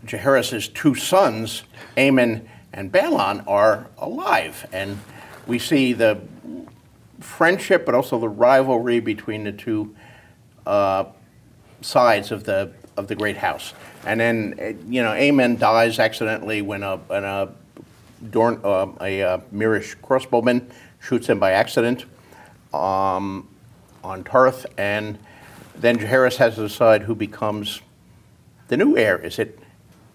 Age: 50-69